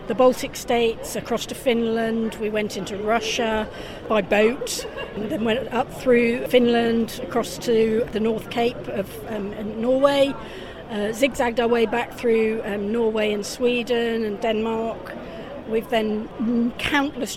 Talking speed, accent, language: 140 wpm, British, English